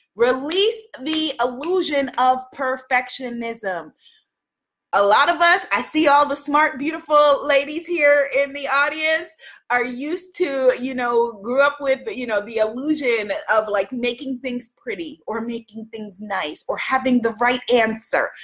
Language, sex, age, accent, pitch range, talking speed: English, female, 30-49, American, 245-315 Hz, 150 wpm